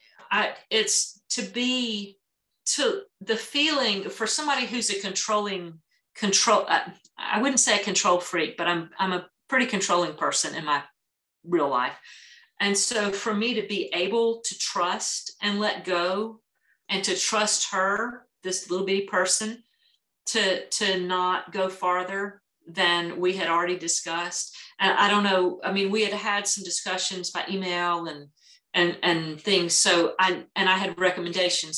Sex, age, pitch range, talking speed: female, 40-59, 180-215 Hz, 155 wpm